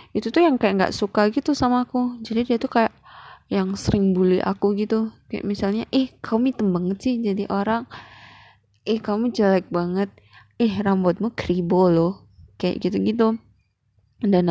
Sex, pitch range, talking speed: female, 180-220 Hz, 155 wpm